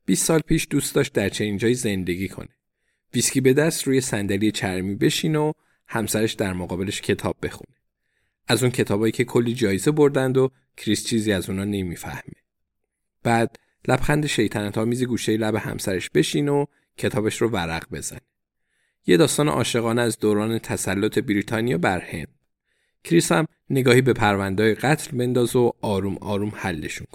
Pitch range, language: 105-135 Hz, Persian